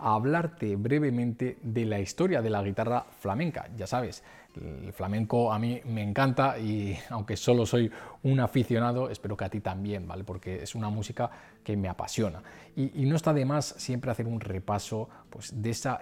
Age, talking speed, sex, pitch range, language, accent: 20-39, 185 wpm, male, 100-120 Hz, Spanish, Spanish